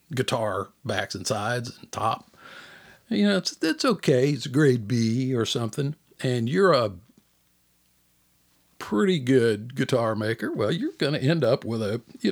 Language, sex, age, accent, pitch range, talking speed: English, male, 60-79, American, 105-145 Hz, 155 wpm